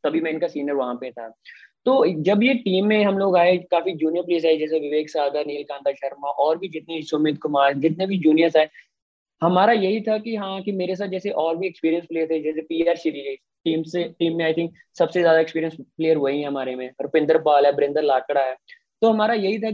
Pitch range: 155-180 Hz